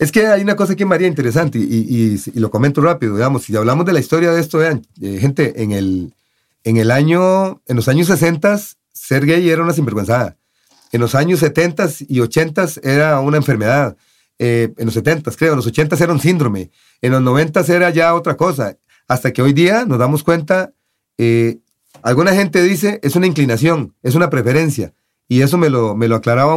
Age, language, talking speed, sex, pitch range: 40-59, English, 210 wpm, male, 115-170 Hz